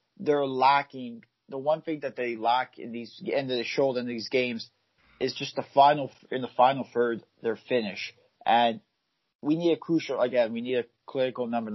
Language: English